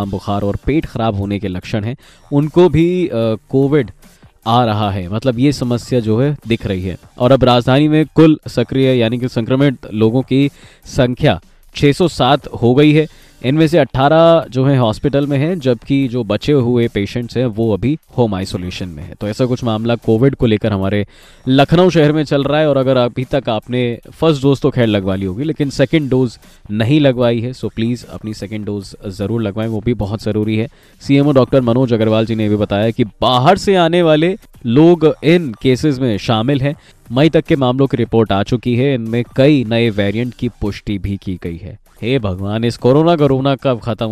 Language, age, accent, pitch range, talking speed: Hindi, 20-39, native, 110-145 Hz, 200 wpm